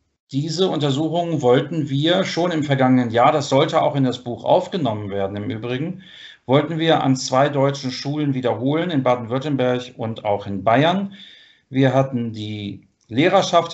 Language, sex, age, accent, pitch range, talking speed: German, male, 40-59, German, 125-155 Hz, 155 wpm